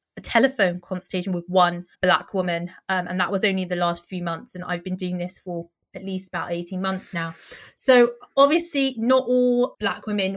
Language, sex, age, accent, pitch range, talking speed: English, female, 20-39, British, 185-240 Hz, 195 wpm